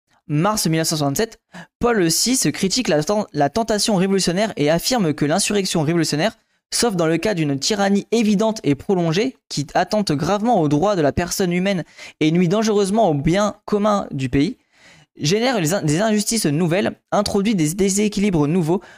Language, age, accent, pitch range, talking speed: French, 20-39, French, 155-210 Hz, 150 wpm